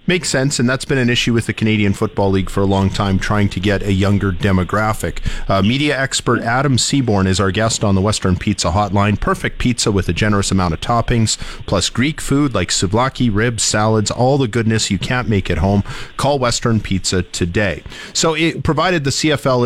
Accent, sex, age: American, male, 40-59